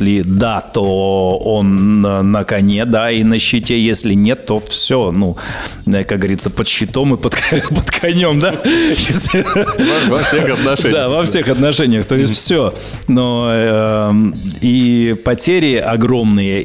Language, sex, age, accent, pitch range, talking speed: Russian, male, 30-49, native, 105-125 Hz, 135 wpm